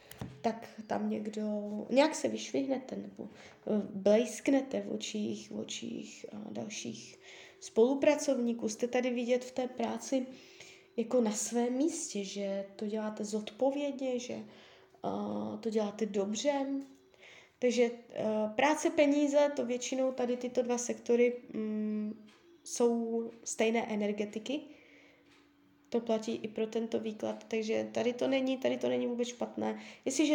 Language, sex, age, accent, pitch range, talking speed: Czech, female, 20-39, native, 215-270 Hz, 115 wpm